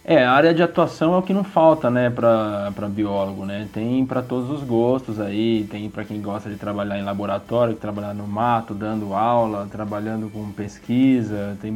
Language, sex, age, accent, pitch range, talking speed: Portuguese, male, 20-39, Brazilian, 105-125 Hz, 195 wpm